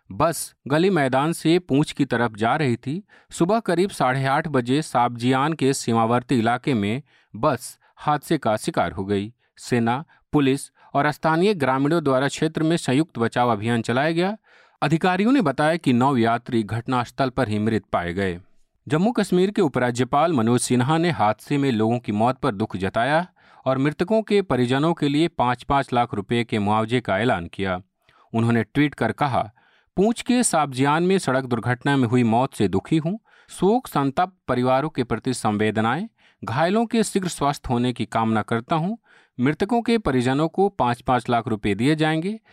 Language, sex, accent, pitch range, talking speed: Hindi, male, native, 120-165 Hz, 170 wpm